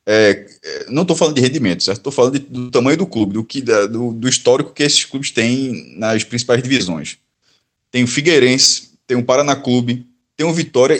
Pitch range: 120-165 Hz